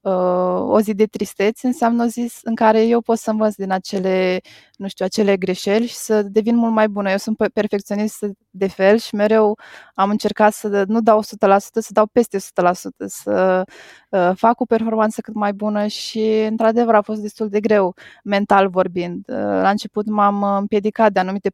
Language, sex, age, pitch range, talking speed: Romanian, female, 20-39, 195-220 Hz, 175 wpm